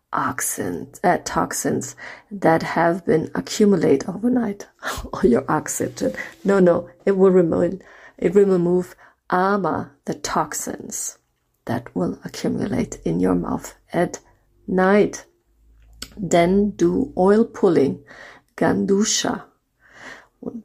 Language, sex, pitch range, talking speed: English, female, 170-205 Hz, 105 wpm